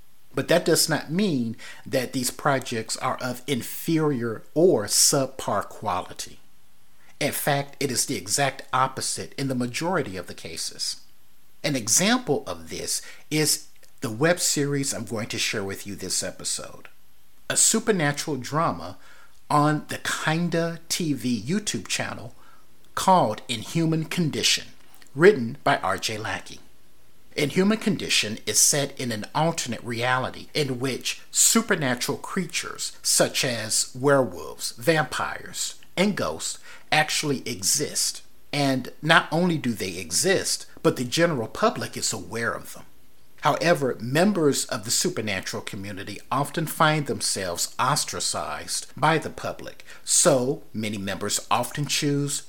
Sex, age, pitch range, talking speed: male, 50-69, 120-160 Hz, 130 wpm